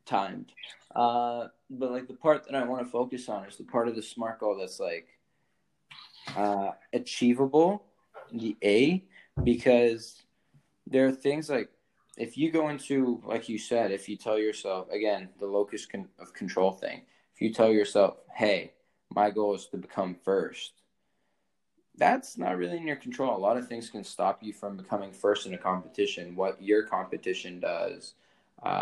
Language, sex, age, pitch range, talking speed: English, male, 20-39, 95-120 Hz, 170 wpm